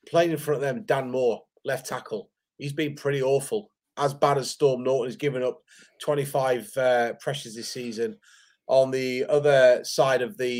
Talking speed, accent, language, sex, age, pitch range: 180 wpm, British, English, male, 30-49, 120-150 Hz